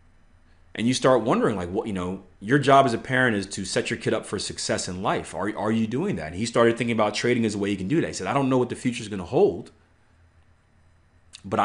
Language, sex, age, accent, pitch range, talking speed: English, male, 30-49, American, 90-125 Hz, 280 wpm